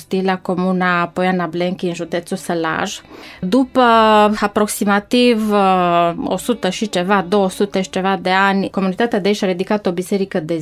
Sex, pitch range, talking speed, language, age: female, 180-210 Hz, 140 wpm, Romanian, 20-39